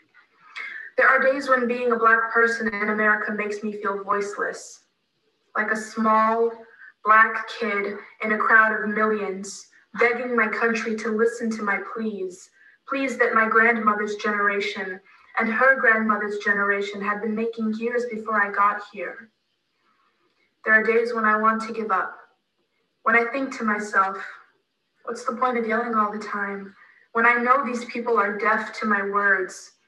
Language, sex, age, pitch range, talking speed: English, female, 20-39, 205-235 Hz, 165 wpm